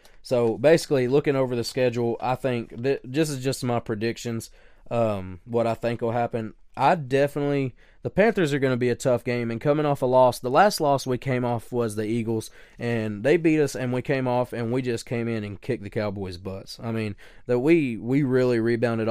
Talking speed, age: 215 wpm, 20-39